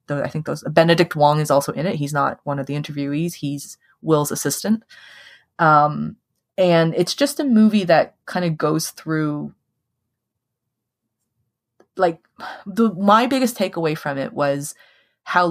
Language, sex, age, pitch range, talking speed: English, female, 20-39, 140-160 Hz, 145 wpm